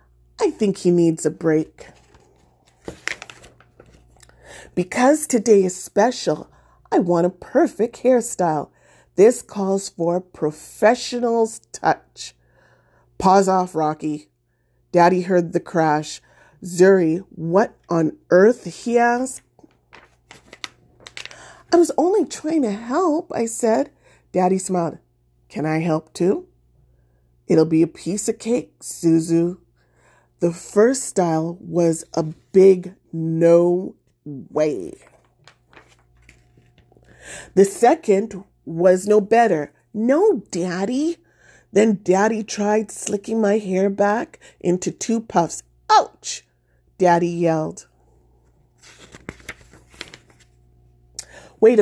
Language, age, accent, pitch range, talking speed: English, 30-49, American, 155-215 Hz, 95 wpm